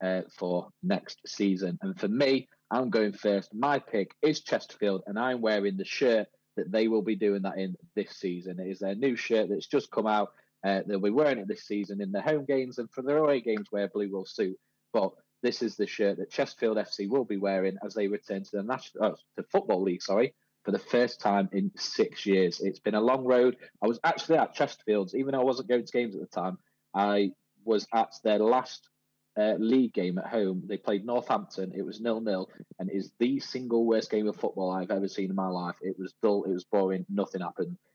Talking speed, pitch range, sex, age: 230 wpm, 95-115 Hz, male, 30-49